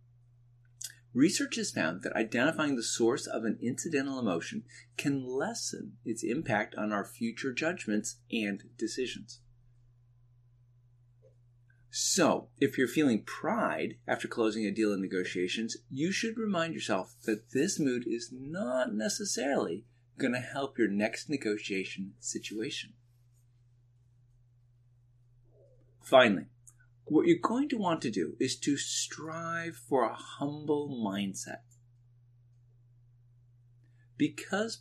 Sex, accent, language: male, American, English